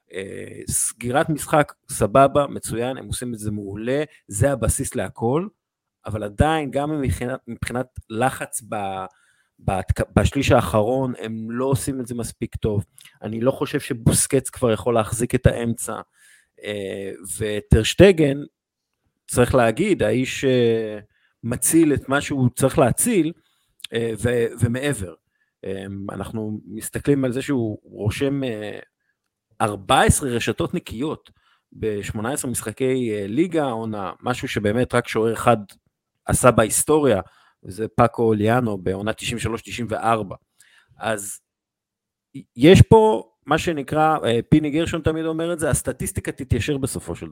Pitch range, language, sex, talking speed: 110-145 Hz, Hebrew, male, 120 wpm